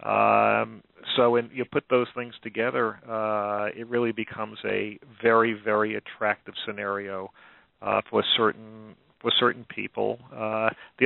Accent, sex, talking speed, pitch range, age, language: American, male, 135 wpm, 105-120 Hz, 40-59, English